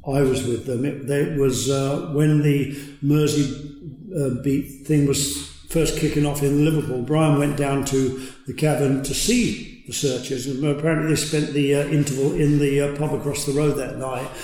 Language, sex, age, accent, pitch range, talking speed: English, male, 50-69, British, 135-150 Hz, 190 wpm